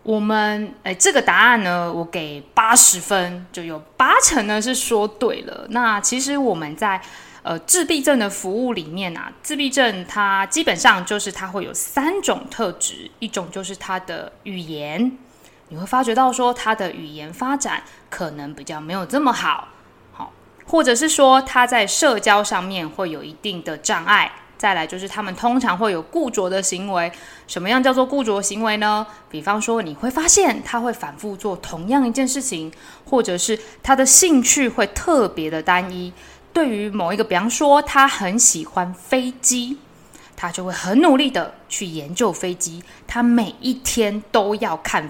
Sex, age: female, 20-39